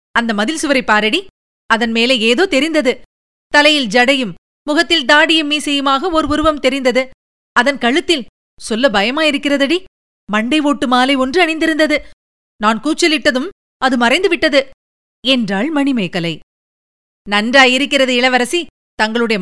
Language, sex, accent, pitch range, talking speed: Tamil, female, native, 260-310 Hz, 105 wpm